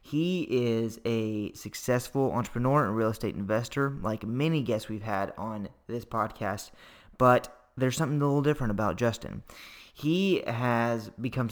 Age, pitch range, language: 20-39, 110-125 Hz, English